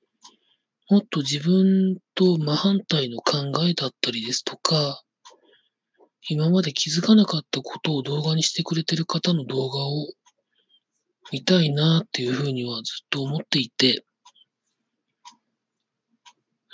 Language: Japanese